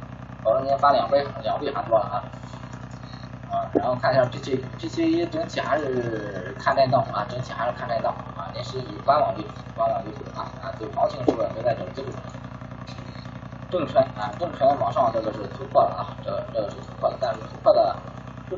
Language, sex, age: Chinese, male, 20-39